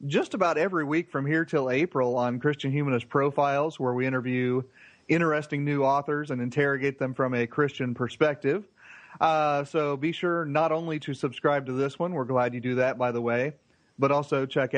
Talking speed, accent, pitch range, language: 190 wpm, American, 125-150 Hz, English